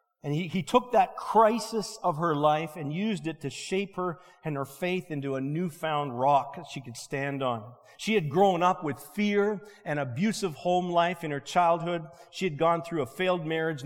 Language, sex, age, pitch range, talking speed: English, male, 50-69, 145-195 Hz, 205 wpm